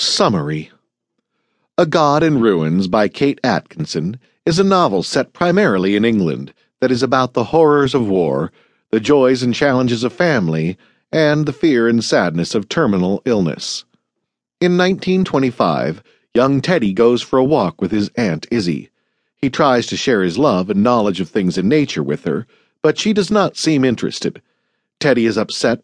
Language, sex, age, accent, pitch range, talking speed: English, male, 50-69, American, 105-155 Hz, 165 wpm